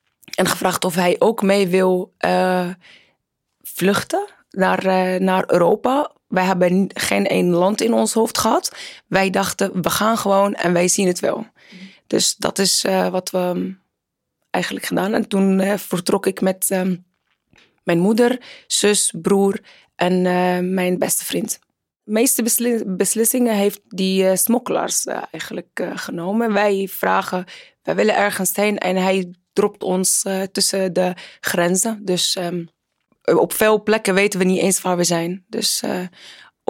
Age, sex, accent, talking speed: 20-39, female, Dutch, 155 wpm